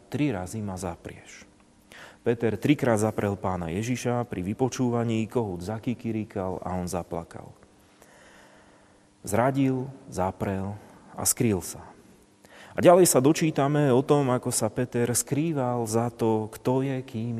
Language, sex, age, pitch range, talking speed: Slovak, male, 30-49, 95-125 Hz, 125 wpm